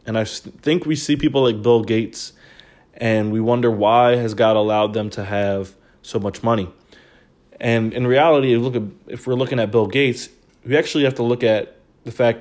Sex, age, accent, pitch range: male, 20-39, American, 105-120 Hz